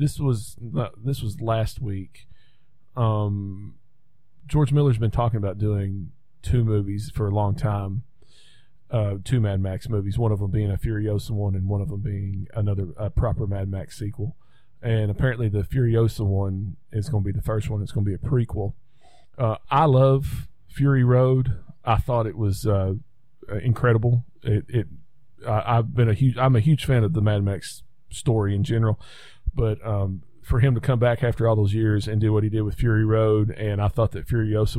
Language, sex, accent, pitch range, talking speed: English, male, American, 105-125 Hz, 195 wpm